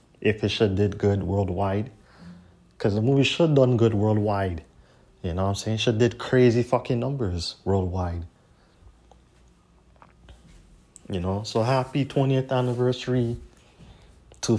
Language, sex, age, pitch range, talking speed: English, male, 30-49, 95-115 Hz, 135 wpm